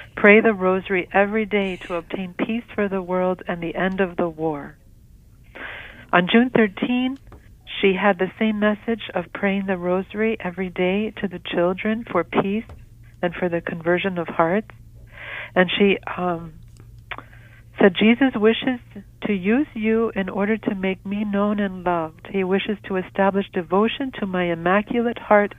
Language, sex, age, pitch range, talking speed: English, female, 60-79, 175-210 Hz, 160 wpm